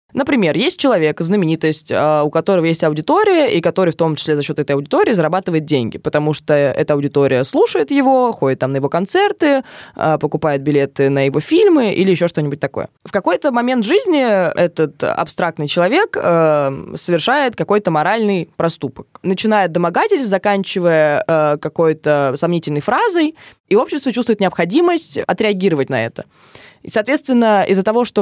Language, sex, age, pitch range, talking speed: Russian, female, 20-39, 155-220 Hz, 145 wpm